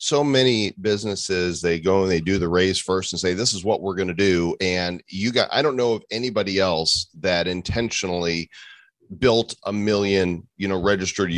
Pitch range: 85-100 Hz